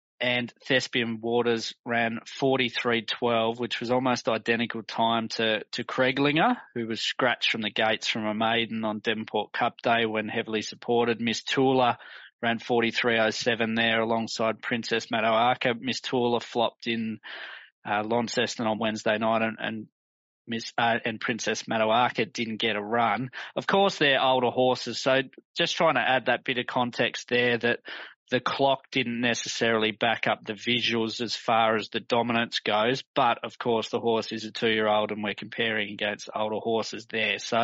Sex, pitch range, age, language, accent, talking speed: male, 110-125 Hz, 20-39, English, Australian, 175 wpm